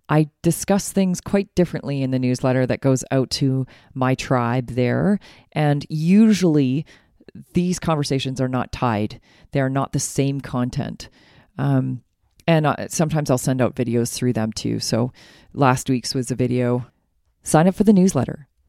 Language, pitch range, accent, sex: English, 125-180 Hz, American, female